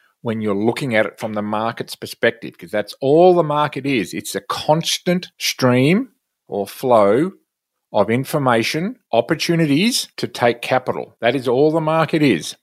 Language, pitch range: English, 110-145 Hz